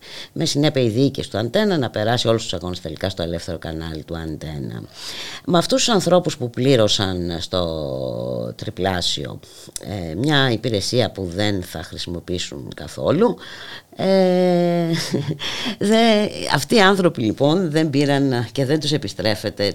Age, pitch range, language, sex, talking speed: 50-69, 90-140 Hz, Greek, female, 135 wpm